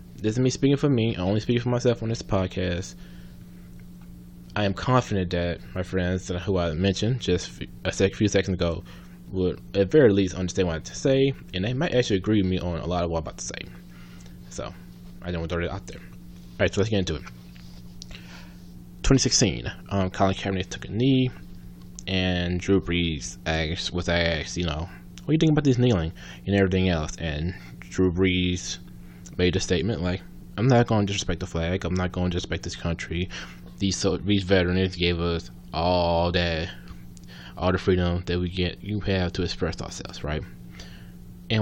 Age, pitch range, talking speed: 20-39, 80-95 Hz, 200 wpm